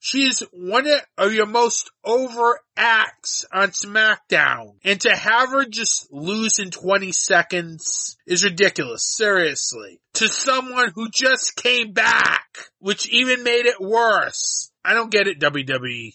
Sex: male